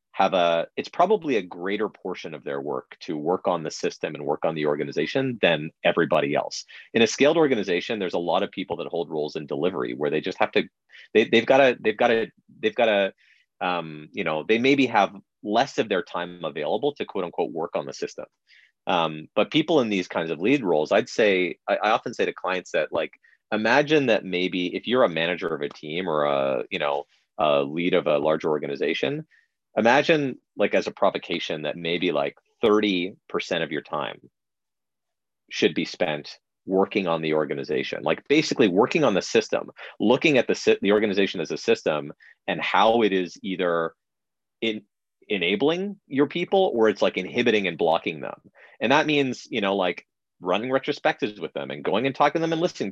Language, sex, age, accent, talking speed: English, male, 30-49, American, 195 wpm